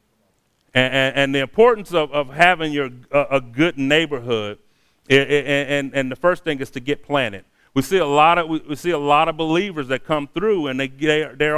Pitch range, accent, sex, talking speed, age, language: 130-155 Hz, American, male, 210 wpm, 40-59, English